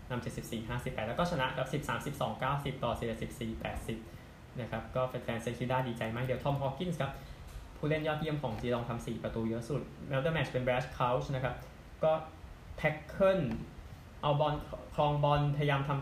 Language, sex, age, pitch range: Thai, male, 20-39, 115-145 Hz